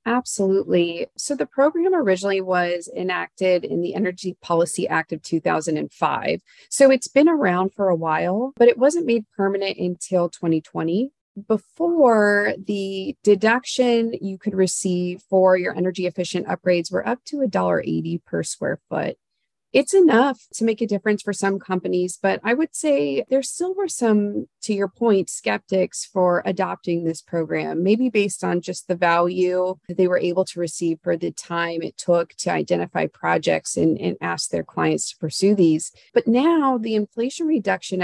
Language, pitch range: English, 175-225 Hz